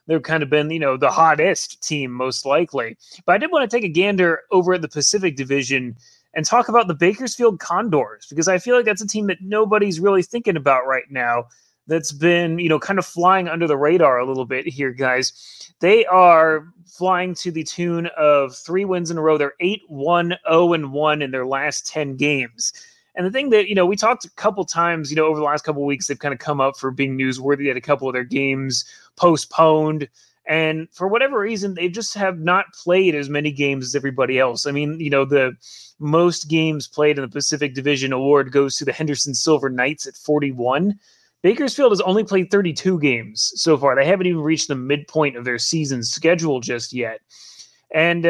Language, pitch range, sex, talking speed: English, 140-180 Hz, male, 215 wpm